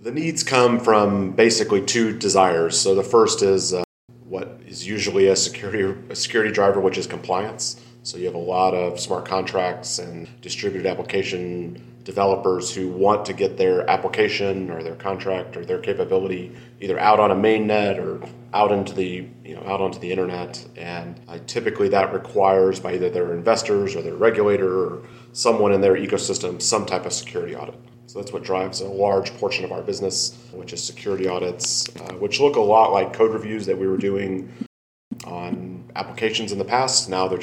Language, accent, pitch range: English, American, 90-115 Hz